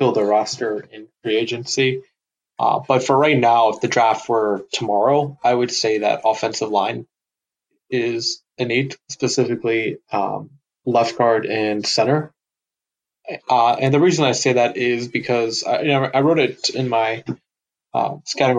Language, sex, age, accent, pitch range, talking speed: English, male, 20-39, American, 115-135 Hz, 155 wpm